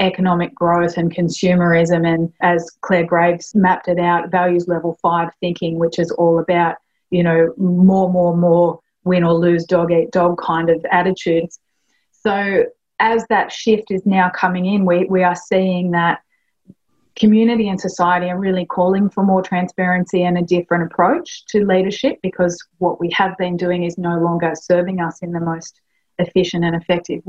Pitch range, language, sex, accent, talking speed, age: 170-190 Hz, English, female, Australian, 170 wpm, 30-49